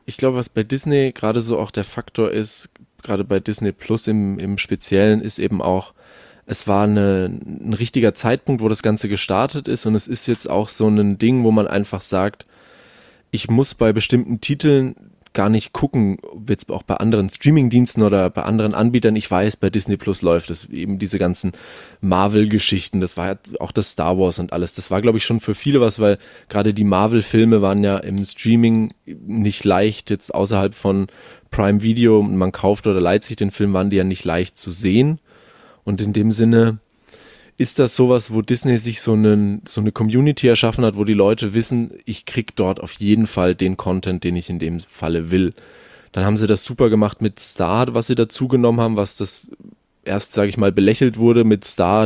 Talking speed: 200 wpm